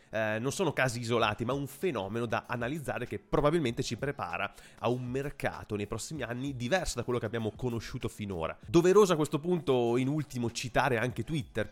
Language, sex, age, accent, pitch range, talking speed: Italian, male, 30-49, native, 110-135 Hz, 185 wpm